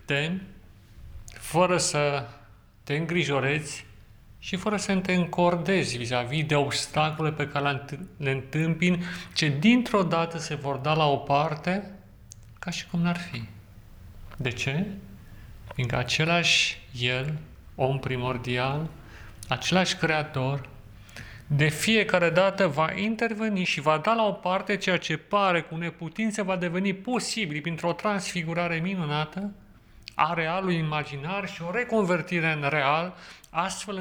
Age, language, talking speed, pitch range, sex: 30-49, Romanian, 125 wpm, 130-175 Hz, male